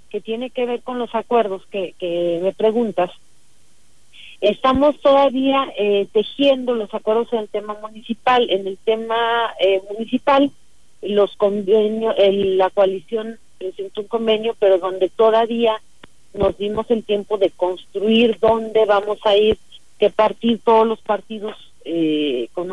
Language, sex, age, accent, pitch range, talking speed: Spanish, female, 40-59, Mexican, 180-225 Hz, 145 wpm